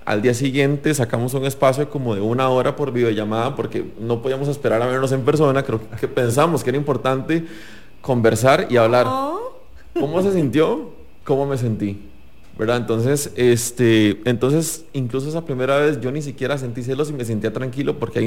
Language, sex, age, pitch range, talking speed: English, male, 30-49, 115-145 Hz, 175 wpm